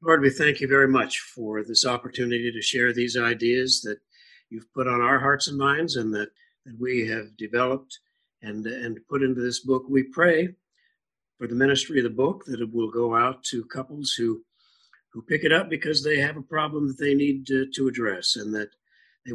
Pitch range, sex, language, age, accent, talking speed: 120-150 Hz, male, English, 60-79, American, 210 wpm